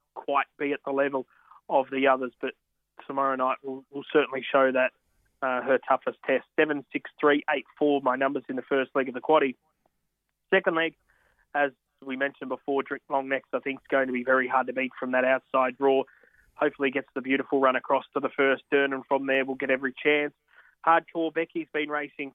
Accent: Australian